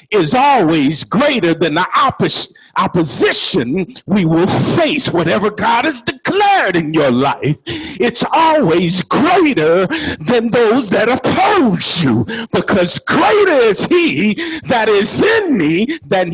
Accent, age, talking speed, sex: American, 50-69, 125 wpm, male